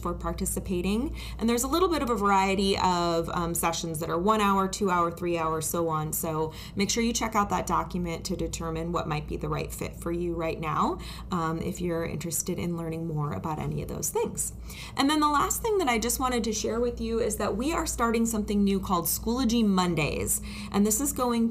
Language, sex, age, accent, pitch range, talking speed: English, female, 20-39, American, 170-225 Hz, 230 wpm